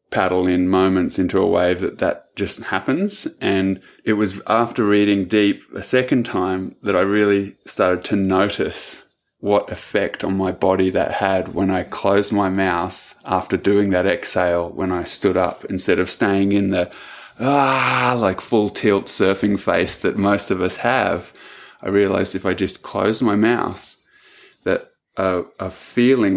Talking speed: 165 wpm